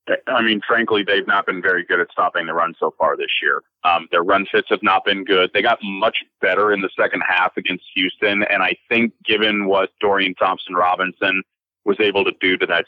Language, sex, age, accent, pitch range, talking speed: English, male, 30-49, American, 100-125 Hz, 225 wpm